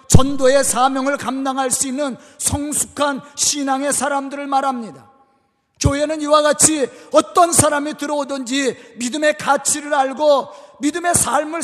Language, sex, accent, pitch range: Korean, male, native, 240-290 Hz